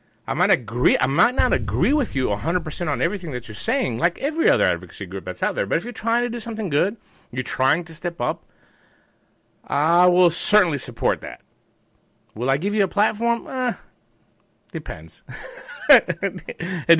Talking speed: 170 wpm